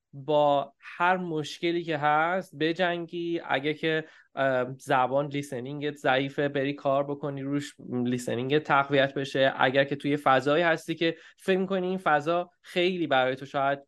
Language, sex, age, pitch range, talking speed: Persian, male, 20-39, 145-185 Hz, 140 wpm